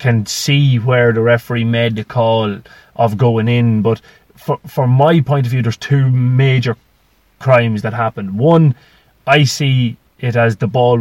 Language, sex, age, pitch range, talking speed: English, male, 30-49, 110-140 Hz, 170 wpm